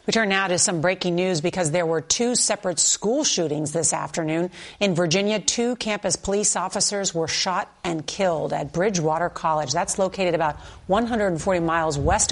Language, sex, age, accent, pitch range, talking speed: English, female, 40-59, American, 165-205 Hz, 170 wpm